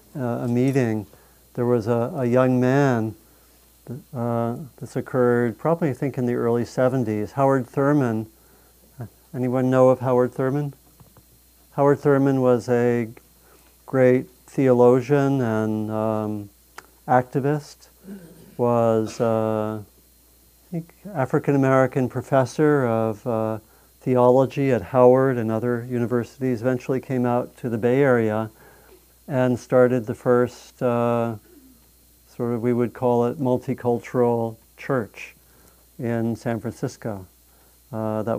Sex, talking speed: male, 110 wpm